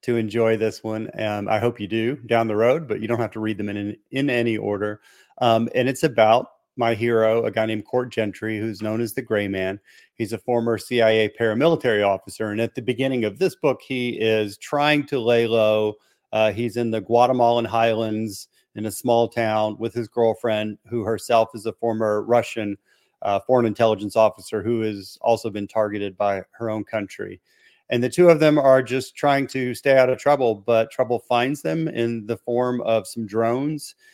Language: English